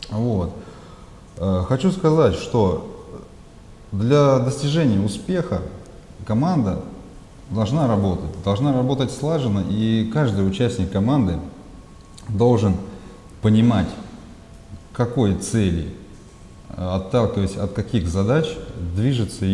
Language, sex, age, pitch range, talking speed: Russian, male, 30-49, 95-130 Hz, 75 wpm